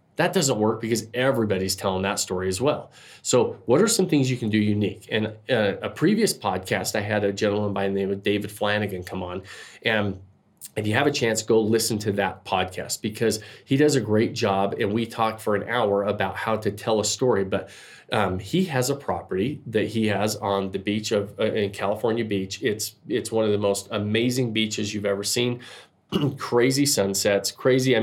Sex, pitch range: male, 100-120 Hz